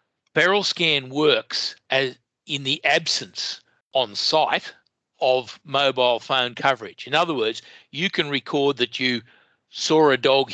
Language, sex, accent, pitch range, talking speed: English, male, Australian, 120-140 Hz, 130 wpm